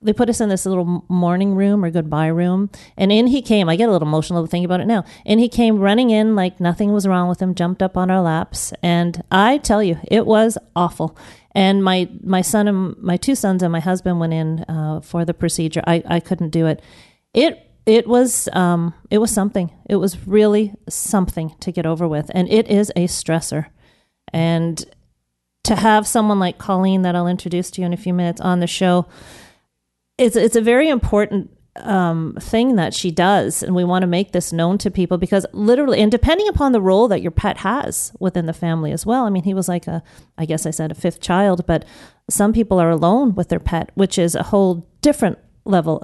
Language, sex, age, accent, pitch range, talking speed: English, female, 40-59, American, 170-205 Hz, 220 wpm